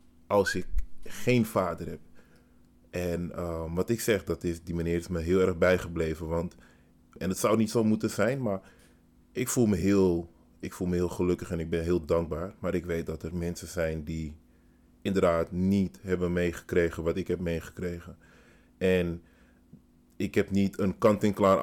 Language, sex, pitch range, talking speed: Dutch, male, 85-95 Hz, 160 wpm